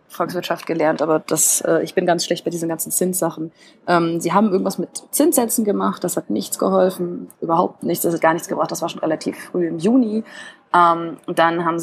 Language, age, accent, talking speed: German, 20-39, German, 210 wpm